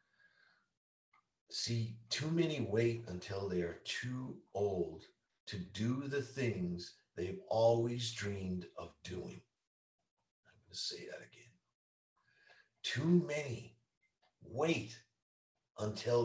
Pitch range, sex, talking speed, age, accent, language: 95-140 Hz, male, 100 wpm, 50-69, American, English